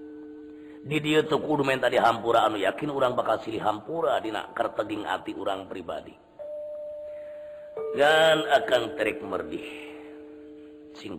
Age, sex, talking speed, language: 50-69, male, 115 wpm, Indonesian